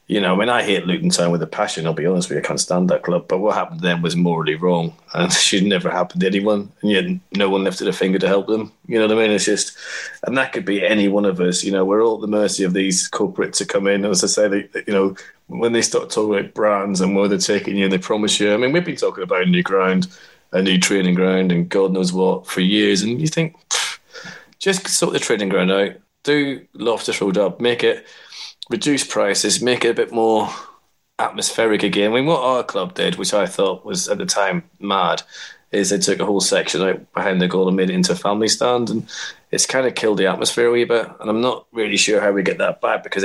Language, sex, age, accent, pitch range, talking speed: English, male, 30-49, British, 95-115 Hz, 260 wpm